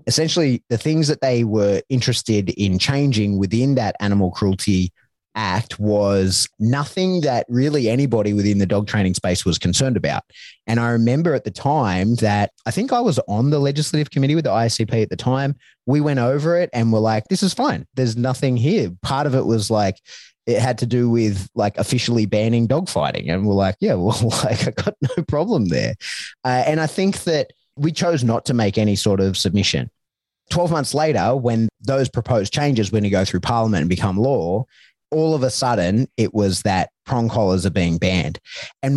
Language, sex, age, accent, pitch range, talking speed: English, male, 20-39, Australian, 100-135 Hz, 200 wpm